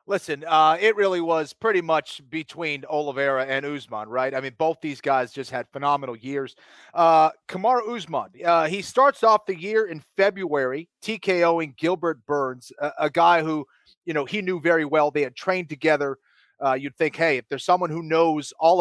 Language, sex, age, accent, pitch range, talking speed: English, male, 30-49, American, 155-210 Hz, 190 wpm